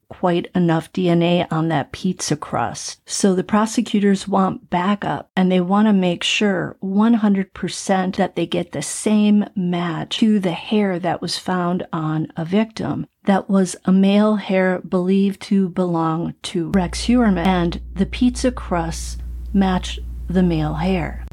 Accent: American